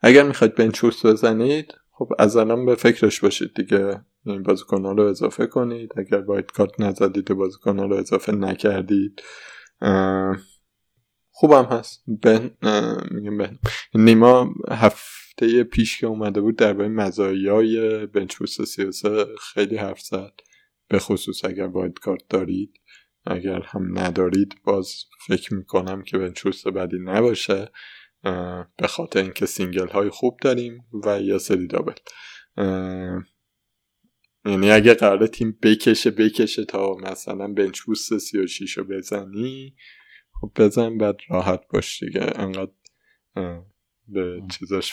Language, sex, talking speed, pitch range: Persian, male, 125 wpm, 95-110 Hz